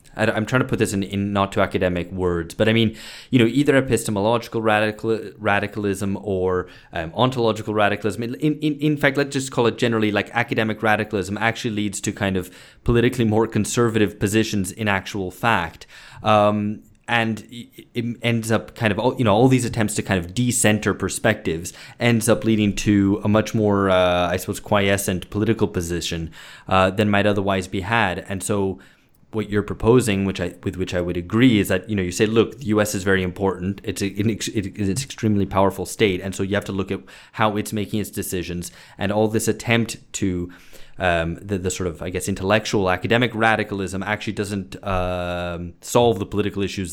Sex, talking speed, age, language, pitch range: male, 190 wpm, 20-39, English, 95-110 Hz